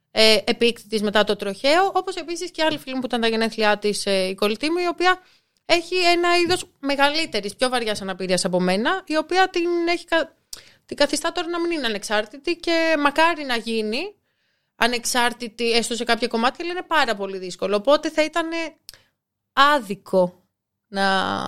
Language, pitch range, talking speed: Greek, 200-295 Hz, 160 wpm